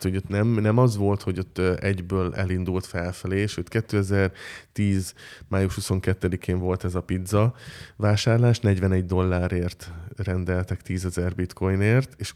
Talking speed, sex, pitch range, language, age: 125 wpm, male, 90-110 Hz, Hungarian, 20-39